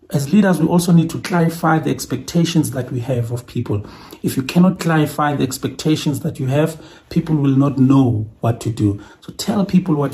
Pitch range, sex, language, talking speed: 120-150 Hz, male, English, 200 wpm